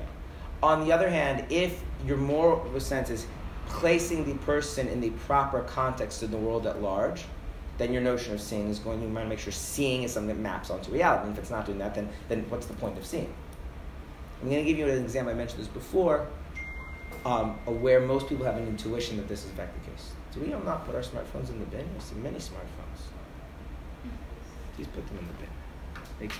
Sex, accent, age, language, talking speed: male, American, 30-49, English, 220 wpm